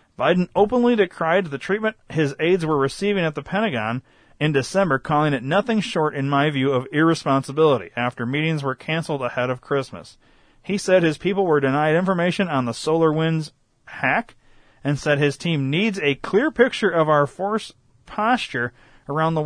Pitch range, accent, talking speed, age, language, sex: 130-165 Hz, American, 175 wpm, 40-59, English, male